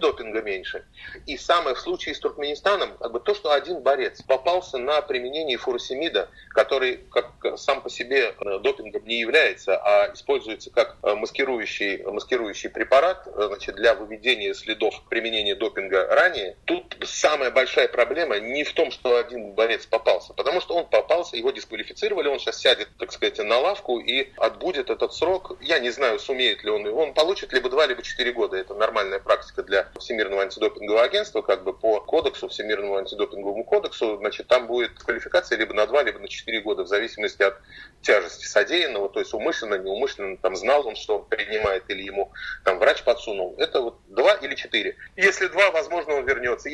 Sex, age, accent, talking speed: male, 30-49, native, 175 wpm